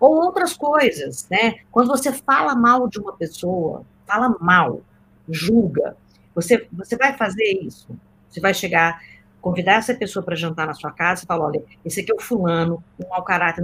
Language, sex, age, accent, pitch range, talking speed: Portuguese, female, 50-69, Brazilian, 190-280 Hz, 180 wpm